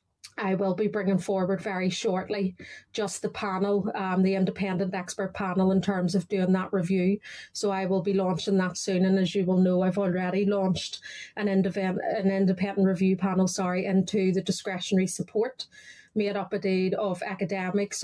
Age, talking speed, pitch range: 30-49, 175 wpm, 185-200 Hz